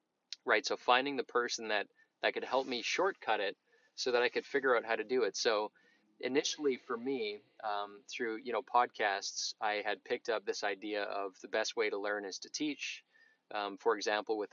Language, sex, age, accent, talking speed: English, male, 20-39, American, 205 wpm